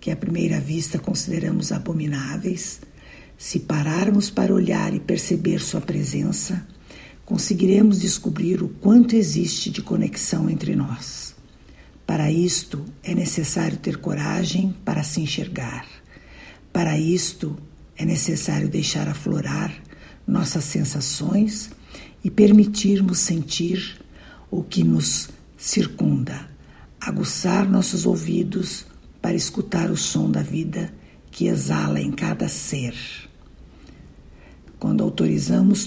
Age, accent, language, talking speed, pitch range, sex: 60-79, Brazilian, Portuguese, 105 wpm, 150-190 Hz, female